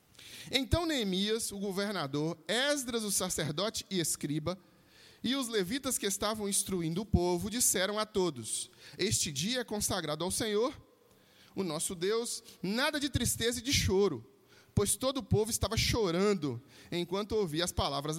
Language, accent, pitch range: Portuguese, Brazilian, 165-220 Hz